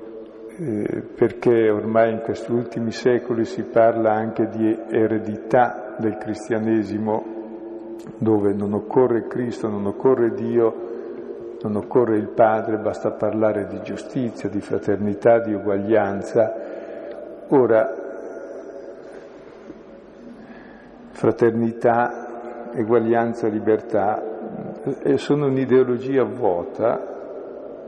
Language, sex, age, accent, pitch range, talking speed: Italian, male, 50-69, native, 110-120 Hz, 85 wpm